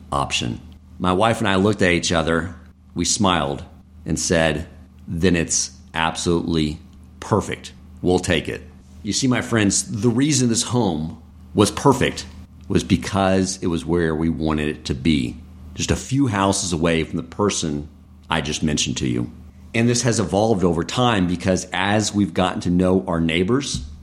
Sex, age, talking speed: male, 50-69, 165 wpm